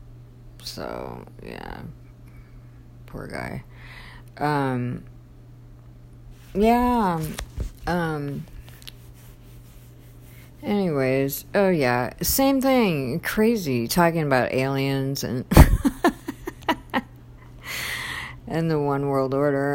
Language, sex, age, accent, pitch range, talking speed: English, female, 50-69, American, 120-190 Hz, 65 wpm